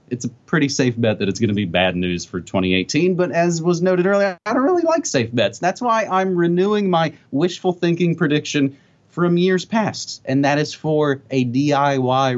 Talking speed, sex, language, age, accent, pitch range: 205 wpm, male, English, 30-49, American, 110-175 Hz